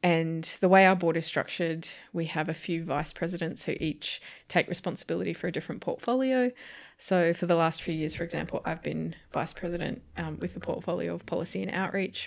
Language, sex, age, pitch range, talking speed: English, female, 20-39, 160-185 Hz, 200 wpm